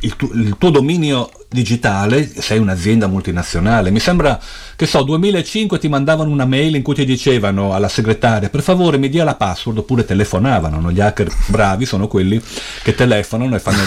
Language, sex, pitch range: Italian, male, 100-130 Hz